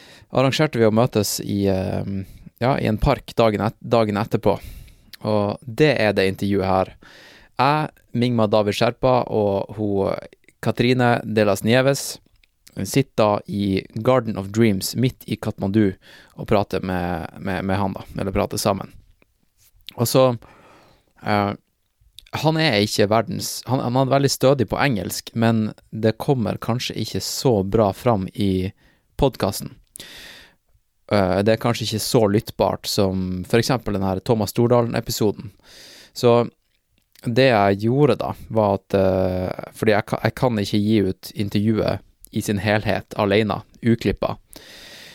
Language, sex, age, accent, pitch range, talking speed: English, male, 20-39, Norwegian, 100-120 Hz, 145 wpm